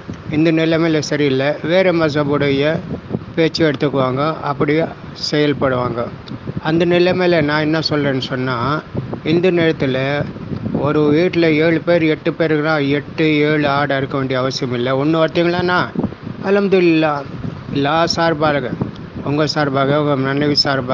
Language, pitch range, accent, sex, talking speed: English, 140-160 Hz, Indian, male, 85 wpm